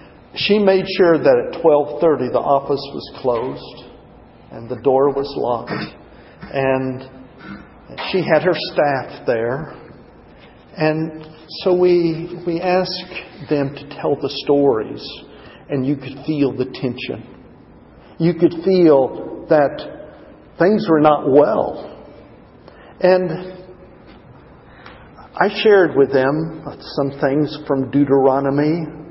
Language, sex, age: English, male, 50-69